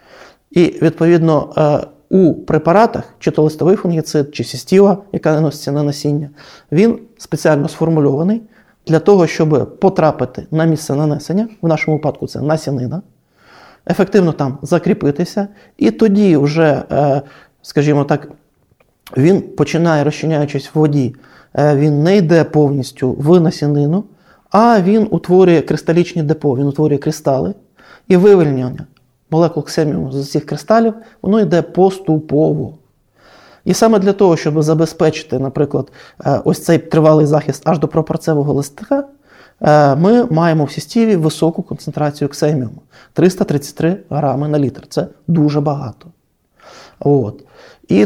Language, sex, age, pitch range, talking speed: Ukrainian, male, 30-49, 145-180 Hz, 120 wpm